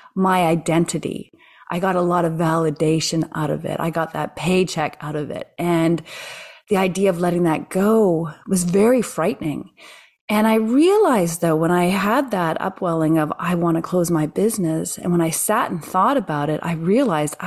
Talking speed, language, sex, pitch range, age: 185 wpm, English, female, 160-215 Hz, 30-49